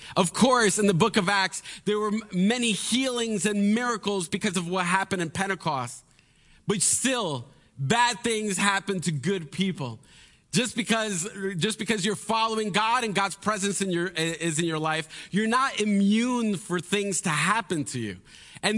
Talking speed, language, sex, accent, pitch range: 170 wpm, English, male, American, 170-220 Hz